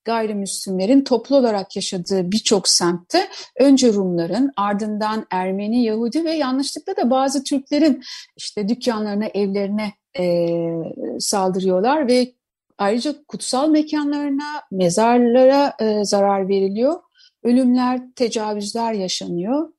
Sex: female